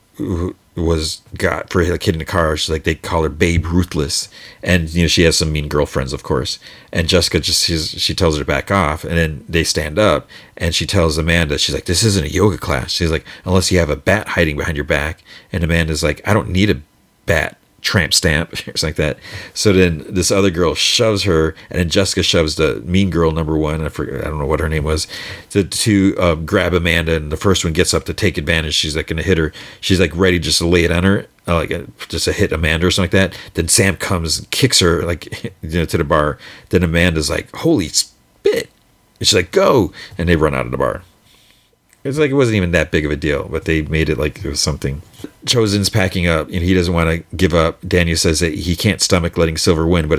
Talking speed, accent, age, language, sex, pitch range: 245 wpm, American, 40-59, English, male, 80-95 Hz